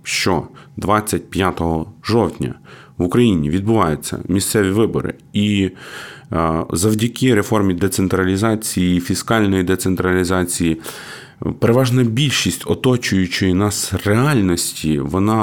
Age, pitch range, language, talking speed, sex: 30-49, 80-100 Hz, Ukrainian, 80 wpm, male